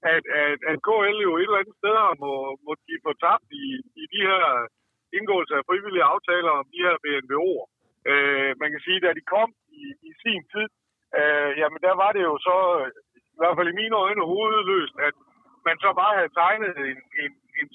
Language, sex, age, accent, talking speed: Danish, male, 60-79, native, 215 wpm